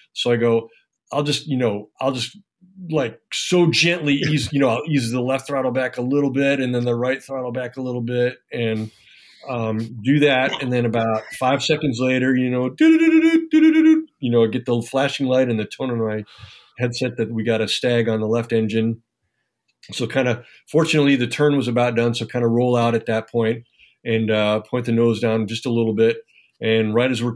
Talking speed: 215 wpm